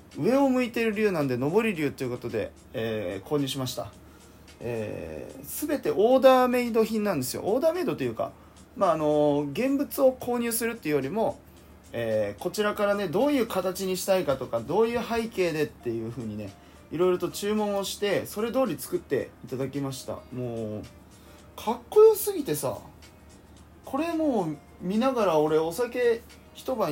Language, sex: Japanese, male